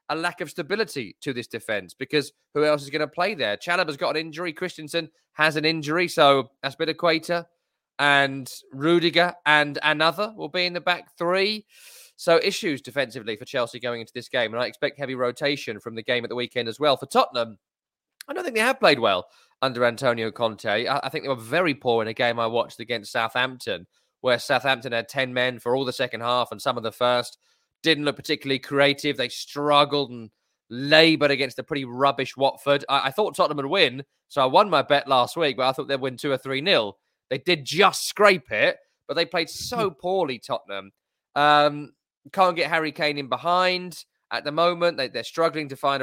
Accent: British